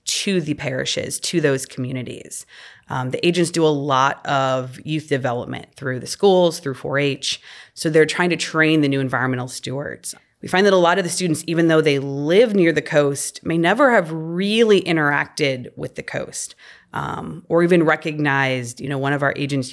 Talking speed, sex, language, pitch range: 190 wpm, female, English, 135-160 Hz